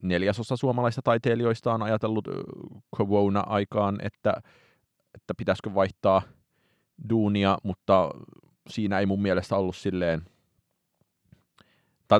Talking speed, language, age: 95 wpm, Finnish, 30-49